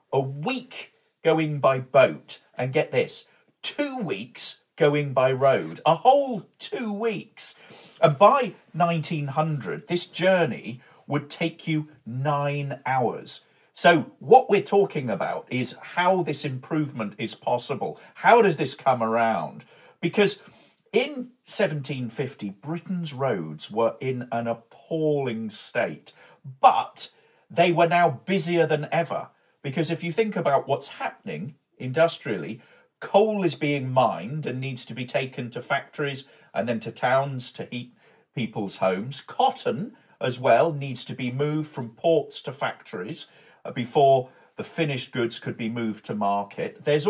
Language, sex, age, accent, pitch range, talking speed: English, male, 50-69, British, 125-170 Hz, 140 wpm